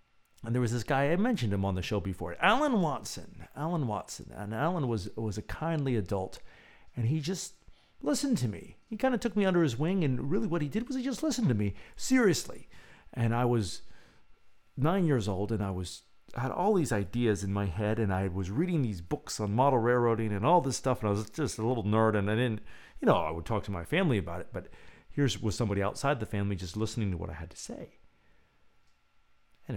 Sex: male